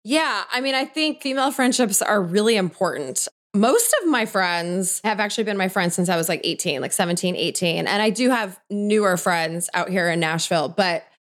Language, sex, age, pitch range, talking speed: English, female, 20-39, 175-220 Hz, 205 wpm